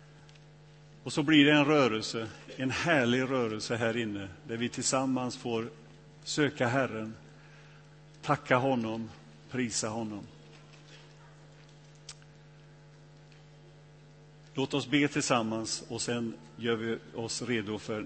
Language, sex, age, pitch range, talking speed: Swedish, male, 50-69, 115-150 Hz, 105 wpm